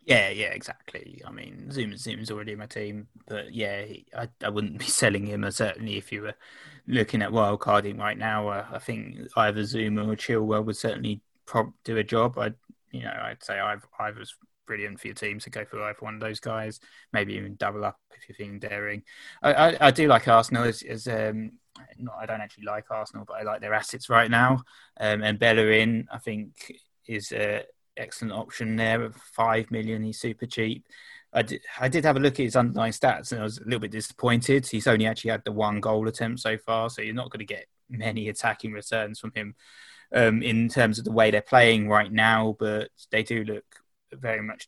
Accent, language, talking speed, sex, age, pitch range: British, English, 220 wpm, male, 20-39, 105-115 Hz